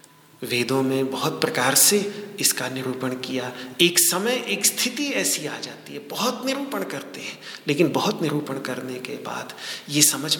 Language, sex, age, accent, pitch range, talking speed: Hindi, male, 40-59, native, 135-205 Hz, 160 wpm